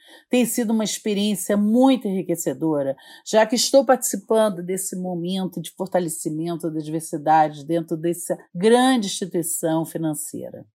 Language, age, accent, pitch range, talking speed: Portuguese, 50-69, Brazilian, 165-210 Hz, 115 wpm